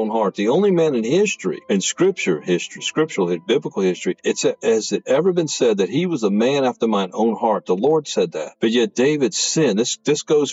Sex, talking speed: male, 220 wpm